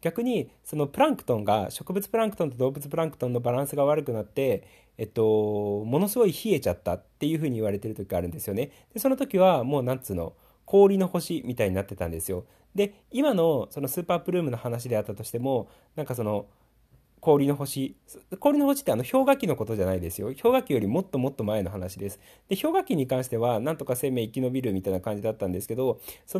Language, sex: Japanese, male